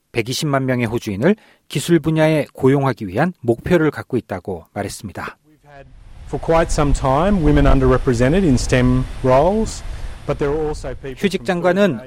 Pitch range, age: 120-170 Hz, 40-59